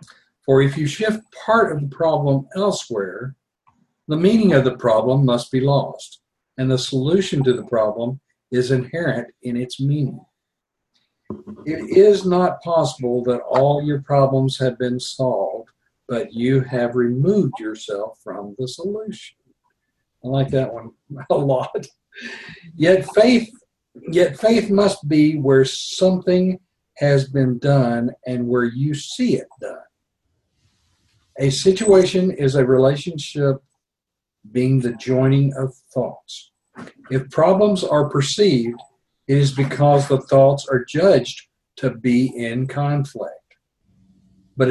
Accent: American